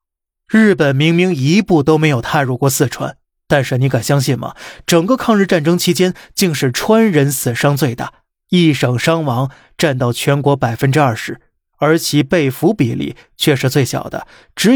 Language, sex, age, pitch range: Chinese, male, 20-39, 130-165 Hz